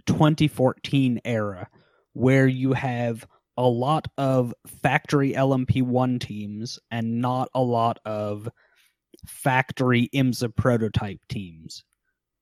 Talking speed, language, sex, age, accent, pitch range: 95 wpm, English, male, 30-49, American, 115-135 Hz